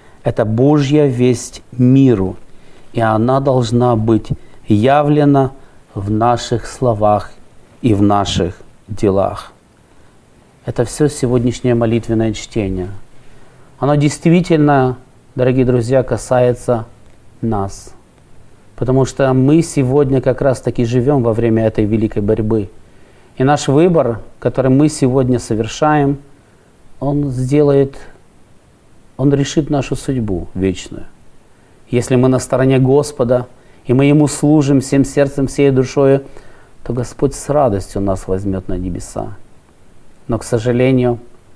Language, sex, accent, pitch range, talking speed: Russian, male, native, 110-140 Hz, 115 wpm